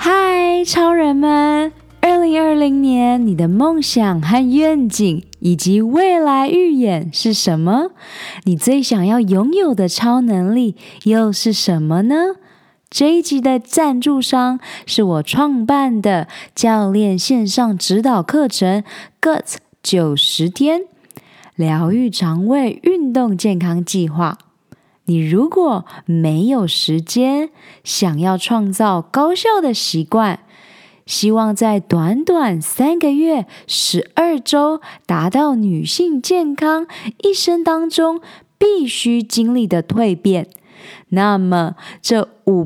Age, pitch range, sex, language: 20-39, 185-285 Hz, female, Chinese